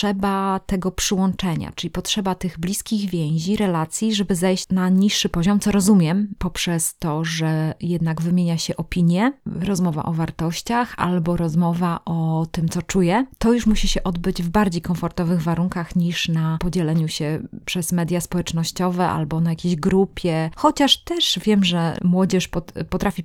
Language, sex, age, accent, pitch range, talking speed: Polish, female, 20-39, native, 170-200 Hz, 150 wpm